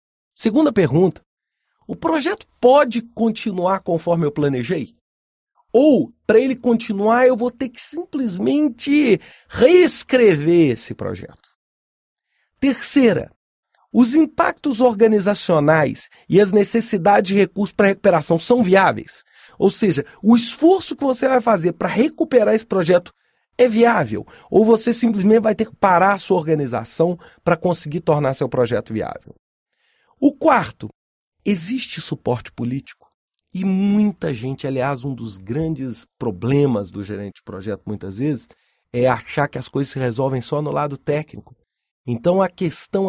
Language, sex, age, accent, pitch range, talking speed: English, male, 40-59, Brazilian, 140-235 Hz, 135 wpm